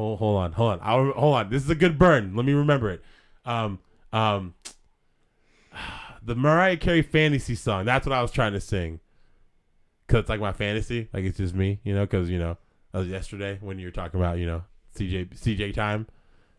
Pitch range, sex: 100-130 Hz, male